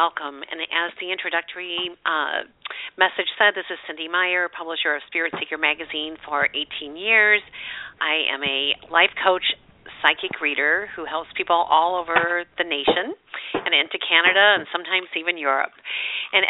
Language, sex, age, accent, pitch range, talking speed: English, female, 50-69, American, 165-200 Hz, 155 wpm